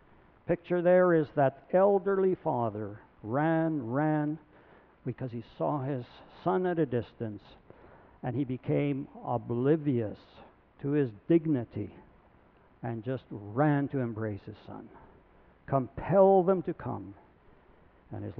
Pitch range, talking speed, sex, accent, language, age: 115-165 Hz, 115 wpm, male, American, English, 60-79